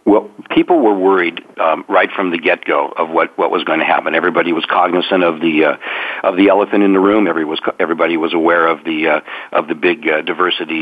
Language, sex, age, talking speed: English, male, 50-69, 225 wpm